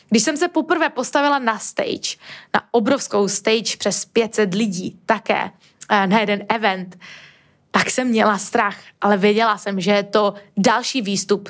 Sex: female